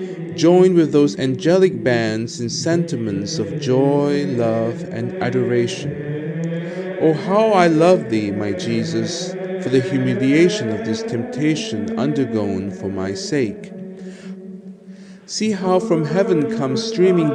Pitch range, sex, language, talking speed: 130-190 Hz, male, English, 120 wpm